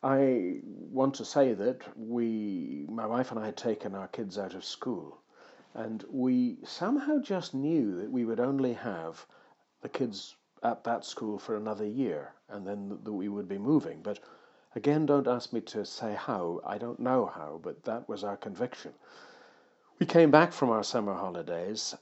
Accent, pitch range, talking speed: British, 100-135 Hz, 180 wpm